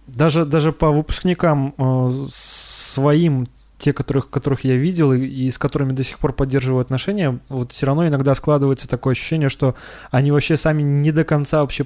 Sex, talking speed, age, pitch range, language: male, 170 wpm, 20-39, 130-155 Hz, Russian